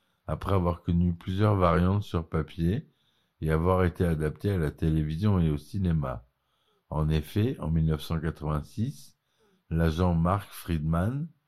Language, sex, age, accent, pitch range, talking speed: French, male, 50-69, French, 80-100 Hz, 125 wpm